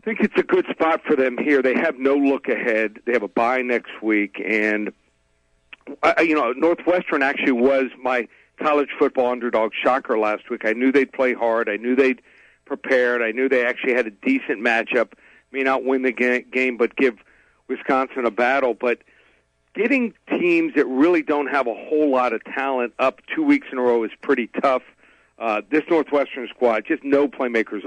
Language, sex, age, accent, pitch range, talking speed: English, male, 50-69, American, 115-150 Hz, 195 wpm